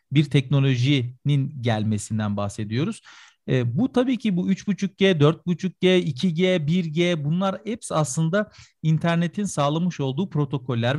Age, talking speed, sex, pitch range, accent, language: 40-59, 110 wpm, male, 130-170 Hz, native, Turkish